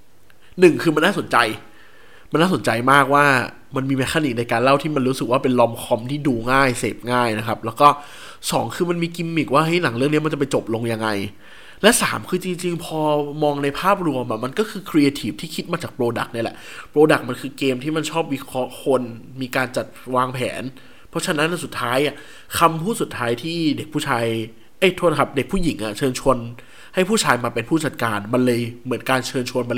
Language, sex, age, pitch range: Thai, male, 20-39, 125-155 Hz